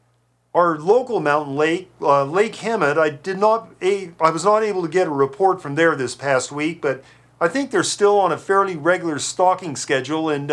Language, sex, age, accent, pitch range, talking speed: English, male, 50-69, American, 145-190 Hz, 205 wpm